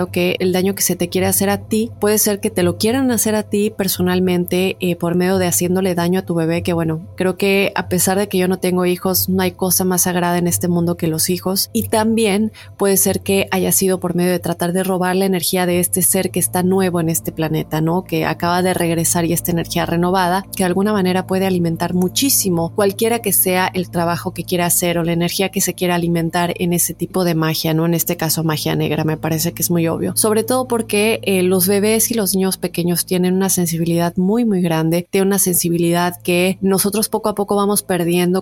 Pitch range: 175-195 Hz